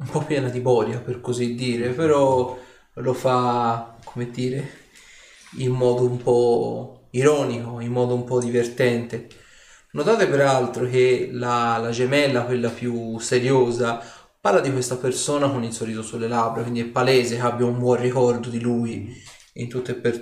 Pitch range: 120-130 Hz